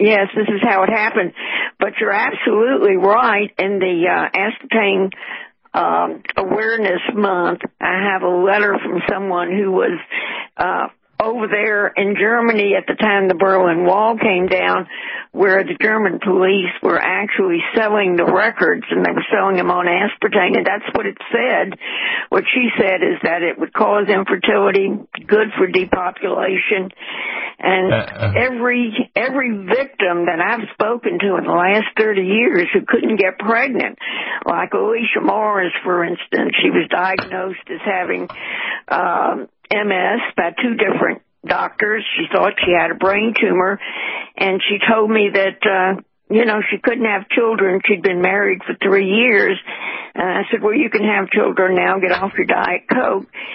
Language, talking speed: English, 160 wpm